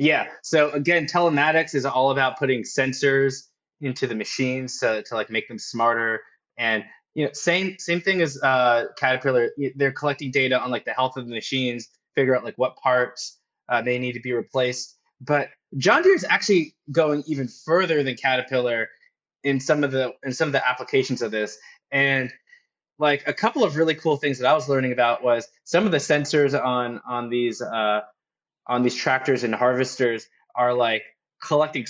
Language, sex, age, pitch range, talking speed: English, male, 20-39, 120-145 Hz, 190 wpm